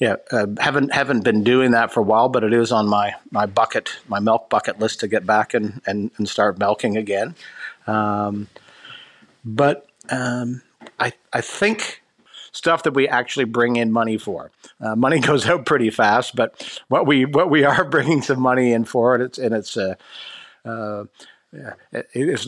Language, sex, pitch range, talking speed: English, male, 110-130 Hz, 180 wpm